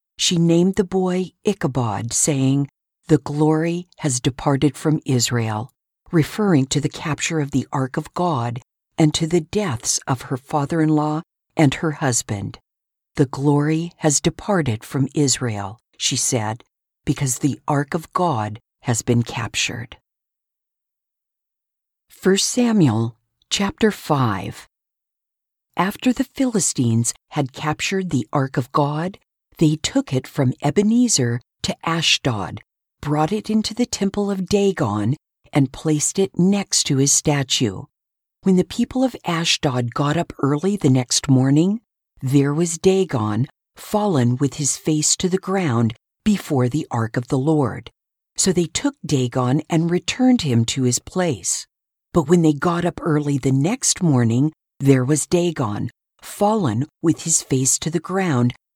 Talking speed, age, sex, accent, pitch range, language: 140 wpm, 50-69, female, American, 130-175 Hz, English